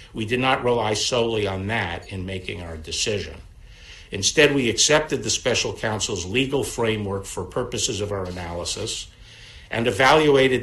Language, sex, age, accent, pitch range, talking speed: English, male, 60-79, American, 95-120 Hz, 145 wpm